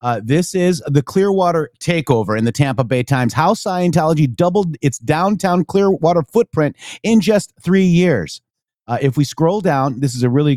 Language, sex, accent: English, male, American